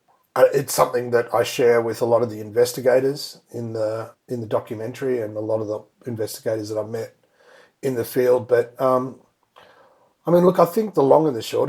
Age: 40-59